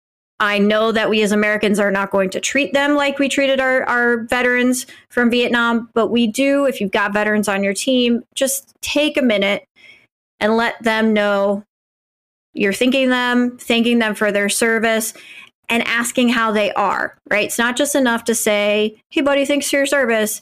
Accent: American